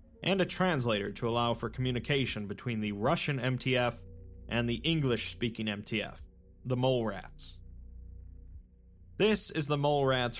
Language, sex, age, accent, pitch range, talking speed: English, male, 30-49, American, 105-140 Hz, 140 wpm